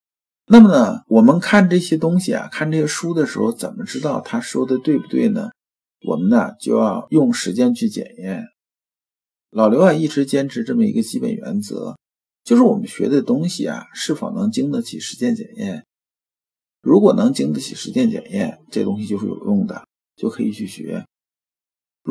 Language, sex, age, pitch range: Chinese, male, 50-69, 170-235 Hz